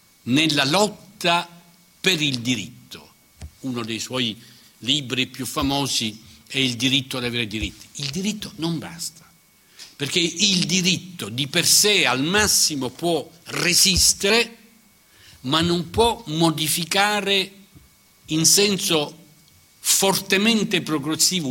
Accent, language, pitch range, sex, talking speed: native, Italian, 125-180 Hz, male, 110 wpm